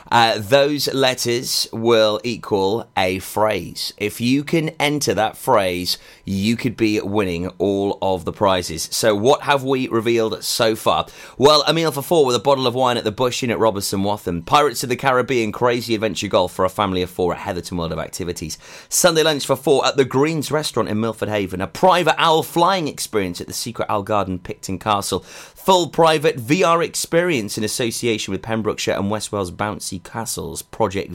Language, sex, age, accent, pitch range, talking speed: English, male, 30-49, British, 100-135 Hz, 190 wpm